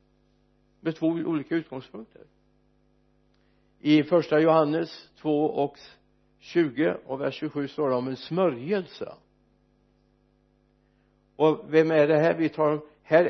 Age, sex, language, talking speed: 60-79, male, Swedish, 120 wpm